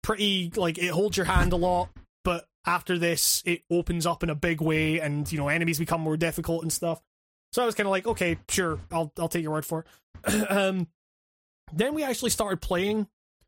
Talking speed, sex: 215 wpm, male